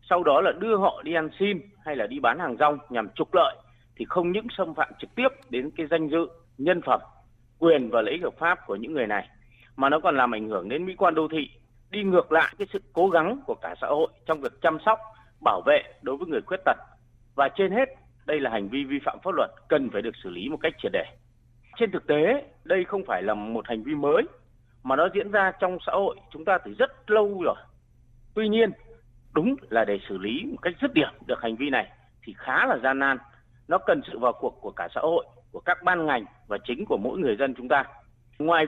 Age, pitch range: 30-49, 125-205 Hz